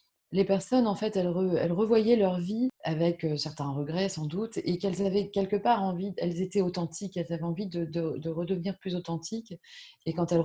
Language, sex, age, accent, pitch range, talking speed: French, female, 20-39, French, 170-205 Hz, 200 wpm